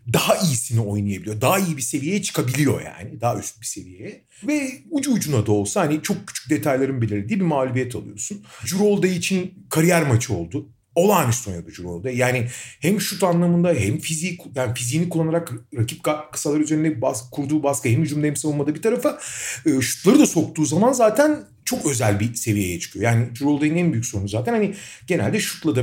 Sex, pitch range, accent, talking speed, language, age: male, 120-175 Hz, native, 175 wpm, Turkish, 40-59